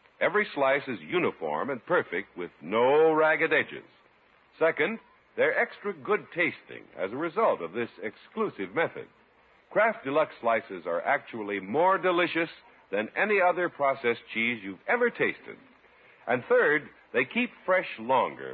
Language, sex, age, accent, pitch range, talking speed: English, male, 60-79, American, 115-190 Hz, 140 wpm